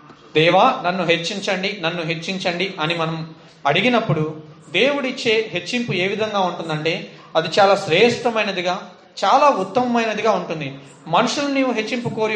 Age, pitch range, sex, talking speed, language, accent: 30-49, 165-220 Hz, male, 105 wpm, Telugu, native